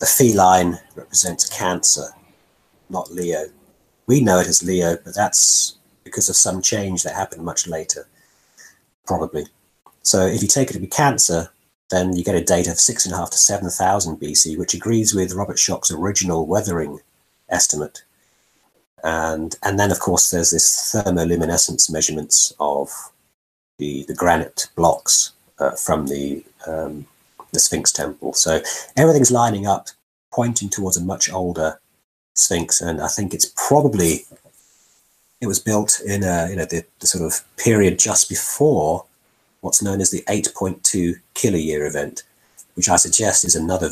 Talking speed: 155 wpm